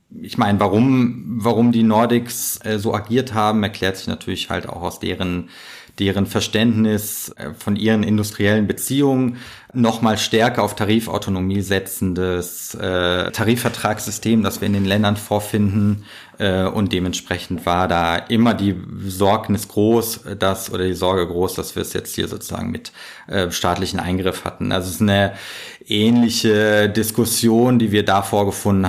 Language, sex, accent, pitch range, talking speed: German, male, German, 90-105 Hz, 140 wpm